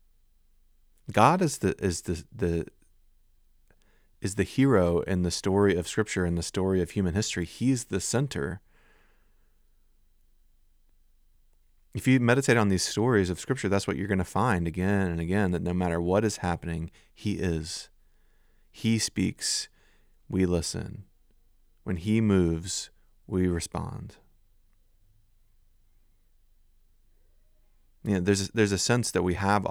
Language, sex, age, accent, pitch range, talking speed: English, male, 30-49, American, 85-105 Hz, 135 wpm